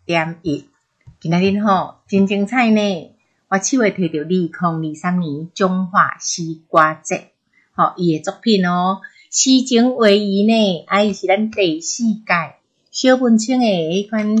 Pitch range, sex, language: 170-215 Hz, female, Chinese